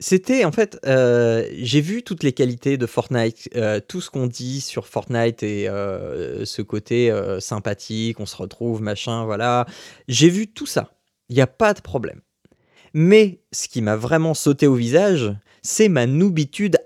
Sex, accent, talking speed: male, French, 180 wpm